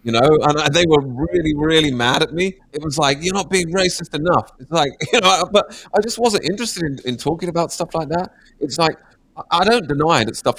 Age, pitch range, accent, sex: 30-49, 100-145 Hz, British, male